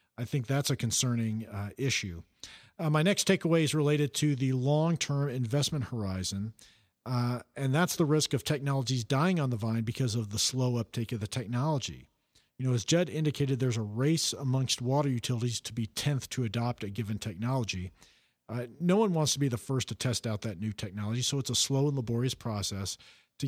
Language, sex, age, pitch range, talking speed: English, male, 50-69, 110-140 Hz, 200 wpm